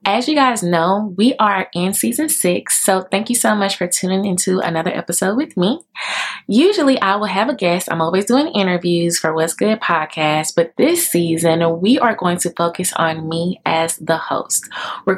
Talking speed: 195 wpm